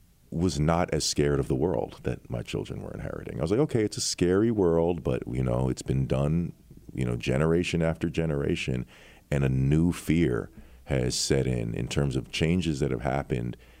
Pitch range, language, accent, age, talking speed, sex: 65-80 Hz, English, American, 40-59, 195 wpm, male